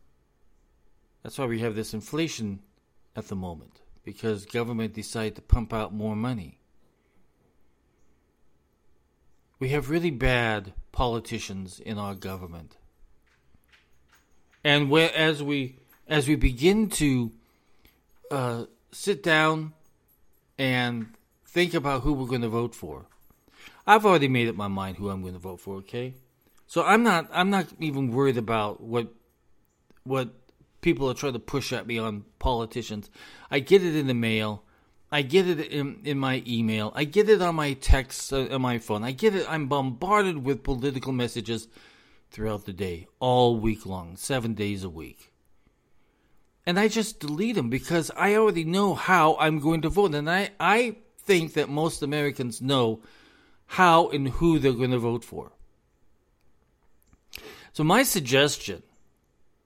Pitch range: 100-150 Hz